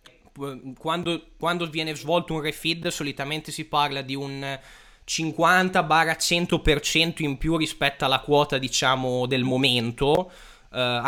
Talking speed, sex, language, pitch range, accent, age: 115 wpm, male, Italian, 130-160 Hz, native, 20-39